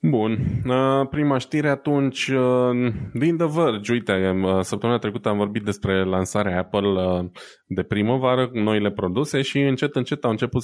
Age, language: 20-39, Romanian